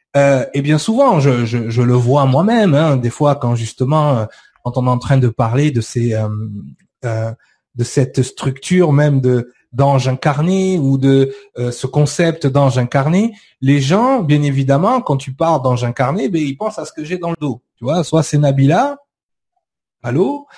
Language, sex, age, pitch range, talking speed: French, male, 30-49, 130-170 Hz, 190 wpm